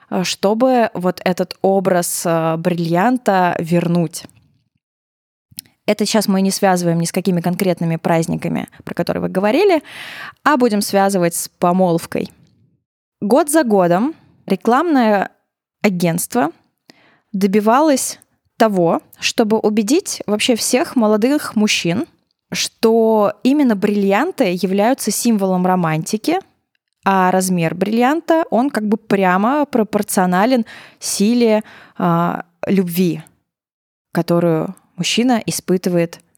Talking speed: 95 wpm